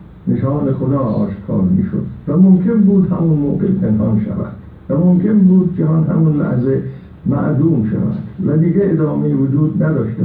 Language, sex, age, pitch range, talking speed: Persian, male, 60-79, 130-185 Hz, 145 wpm